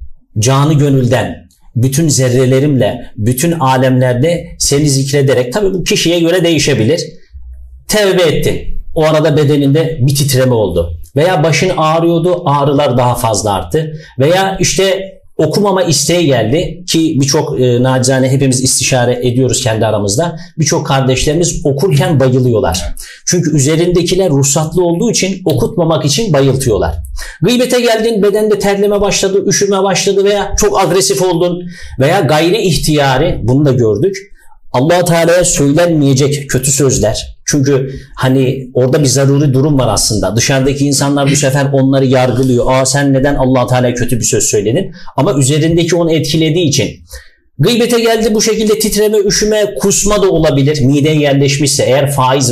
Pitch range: 130-175 Hz